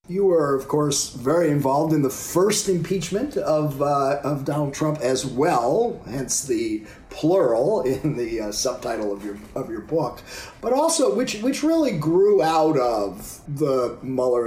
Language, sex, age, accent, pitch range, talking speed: English, male, 40-59, American, 120-180 Hz, 160 wpm